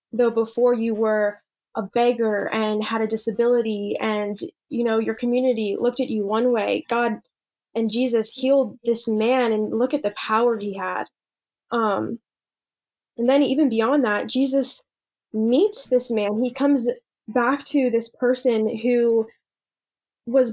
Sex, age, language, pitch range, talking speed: female, 10-29, English, 225-250 Hz, 150 wpm